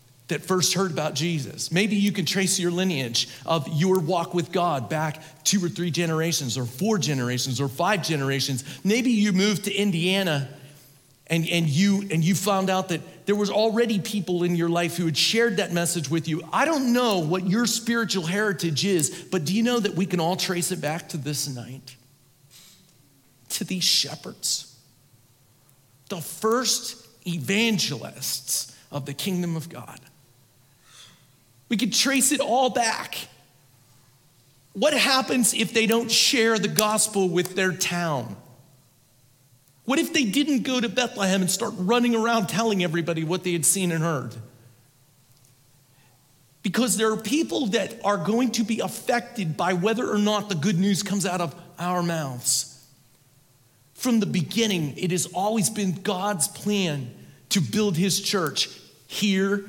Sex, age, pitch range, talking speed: male, 40-59, 140-205 Hz, 160 wpm